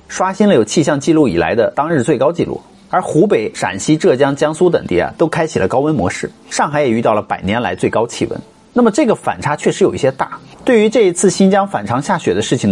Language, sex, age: Chinese, male, 30-49